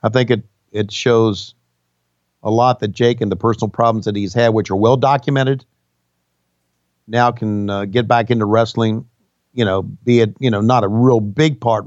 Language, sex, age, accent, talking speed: English, male, 50-69, American, 185 wpm